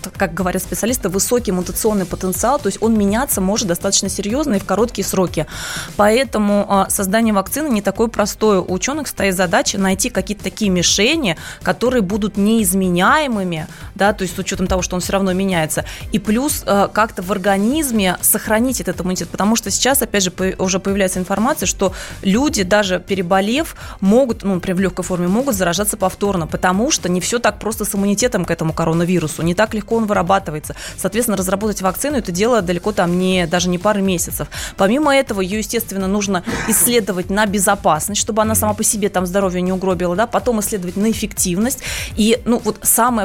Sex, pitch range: female, 185-220 Hz